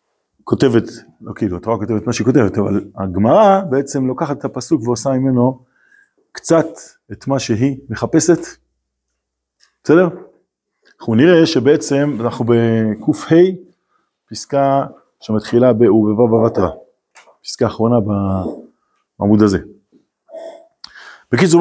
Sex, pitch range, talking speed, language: male, 110-160 Hz, 105 wpm, Hebrew